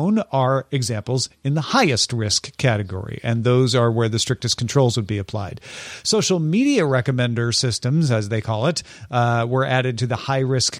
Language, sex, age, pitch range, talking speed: English, male, 40-59, 120-160 Hz, 180 wpm